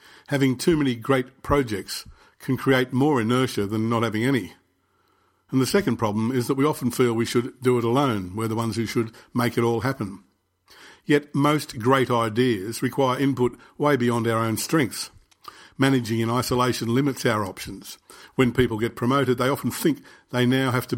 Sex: male